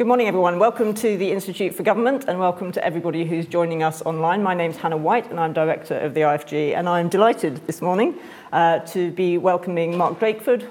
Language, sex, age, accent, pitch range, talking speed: English, female, 40-59, British, 155-195 Hz, 220 wpm